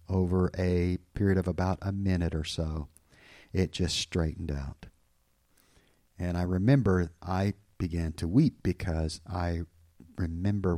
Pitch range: 85-110 Hz